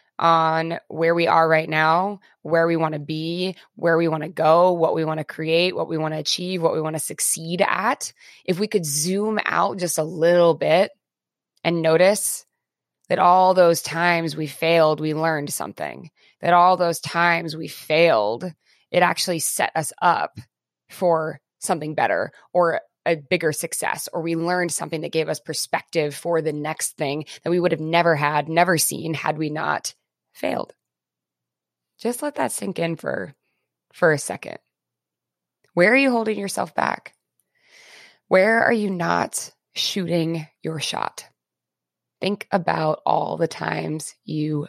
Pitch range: 155-180 Hz